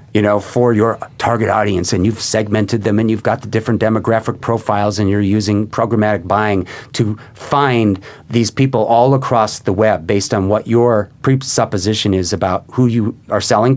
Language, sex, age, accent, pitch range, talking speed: English, male, 40-59, American, 110-140 Hz, 180 wpm